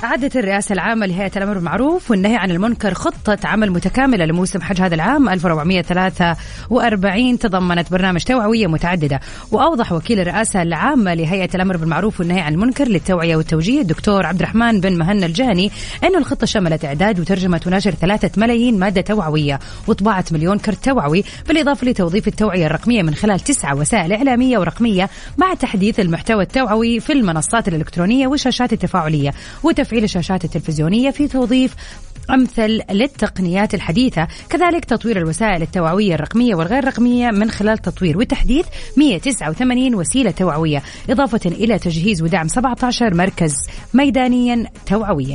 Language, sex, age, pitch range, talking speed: English, female, 30-49, 175-235 Hz, 135 wpm